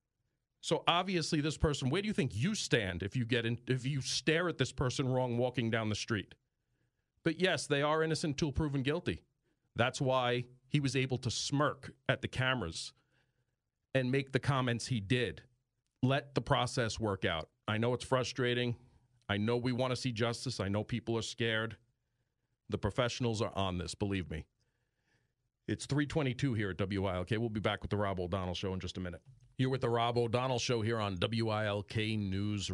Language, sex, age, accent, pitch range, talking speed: English, male, 40-59, American, 110-130 Hz, 195 wpm